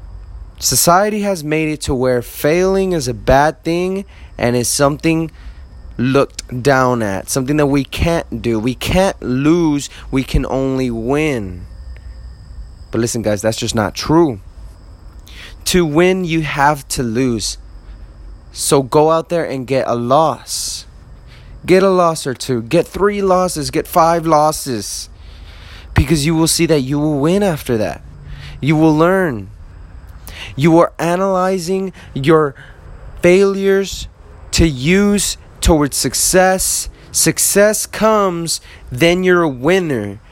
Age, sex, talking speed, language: 20-39, male, 130 wpm, English